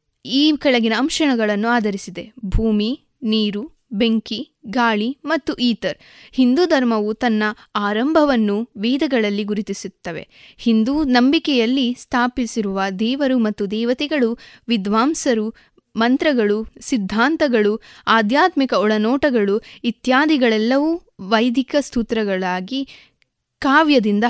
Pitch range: 220-275 Hz